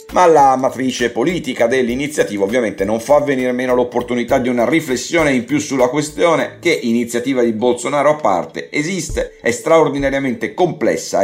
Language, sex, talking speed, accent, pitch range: Italian, male, 150 wpm, native, 115-150 Hz